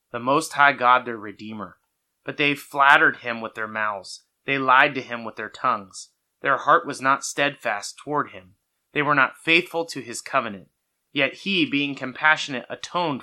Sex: male